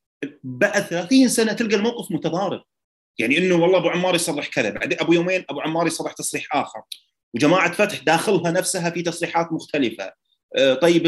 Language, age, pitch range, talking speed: Arabic, 30-49, 130-185 Hz, 155 wpm